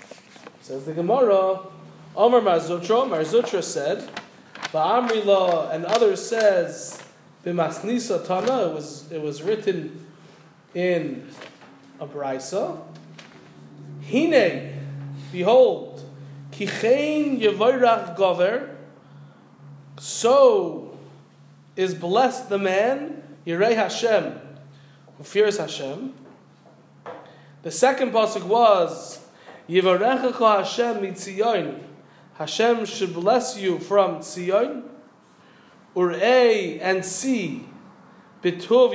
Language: English